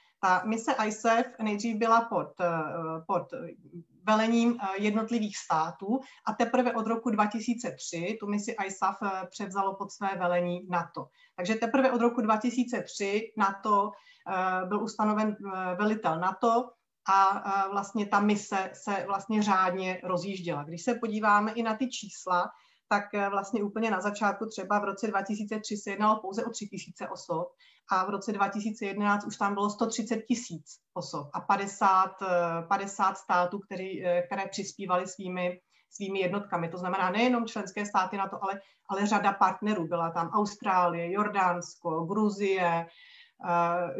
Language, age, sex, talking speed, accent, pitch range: Czech, 30-49, female, 135 wpm, native, 185-220 Hz